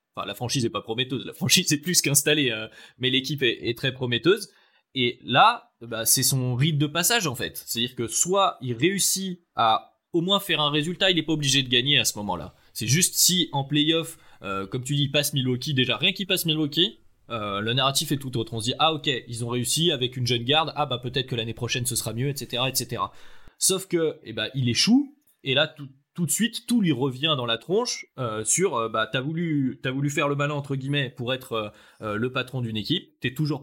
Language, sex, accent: French, male, French